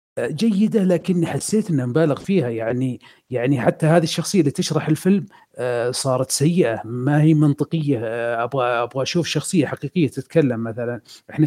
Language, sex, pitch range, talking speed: Arabic, male, 135-175 Hz, 140 wpm